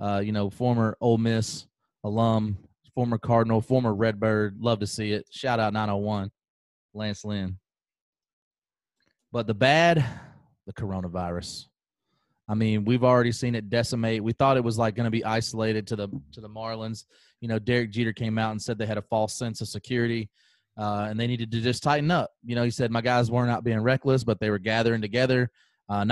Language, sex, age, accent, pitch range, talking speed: English, male, 30-49, American, 105-120 Hz, 195 wpm